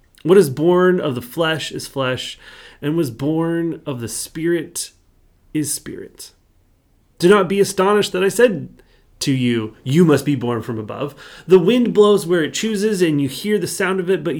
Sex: male